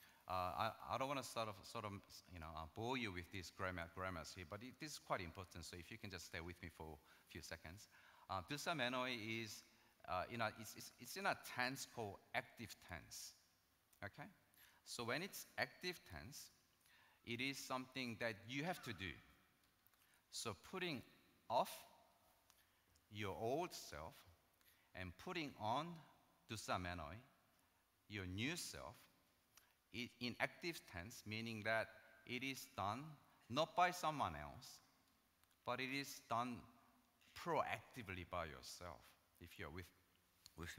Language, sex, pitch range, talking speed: English, male, 90-125 Hz, 150 wpm